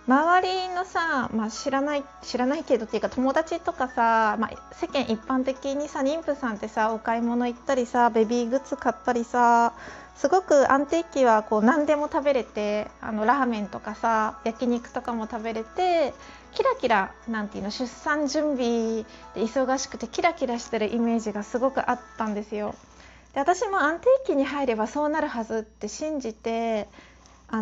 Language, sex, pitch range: Japanese, female, 220-275 Hz